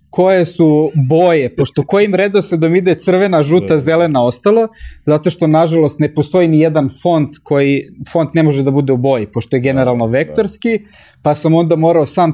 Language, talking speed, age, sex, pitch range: English, 185 wpm, 20-39, male, 130-165 Hz